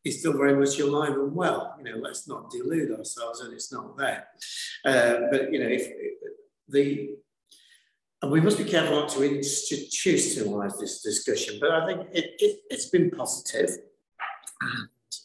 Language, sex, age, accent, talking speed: English, male, 50-69, British, 170 wpm